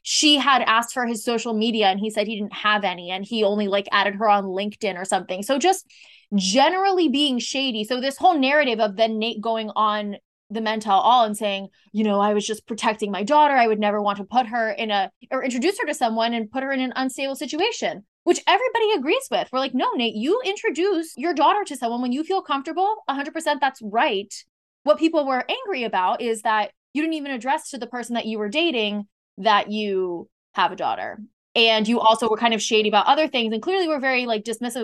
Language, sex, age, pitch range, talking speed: English, female, 20-39, 210-275 Hz, 230 wpm